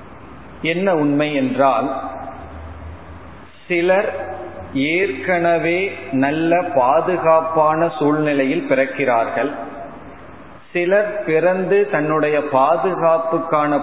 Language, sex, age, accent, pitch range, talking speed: Tamil, male, 40-59, native, 135-180 Hz, 55 wpm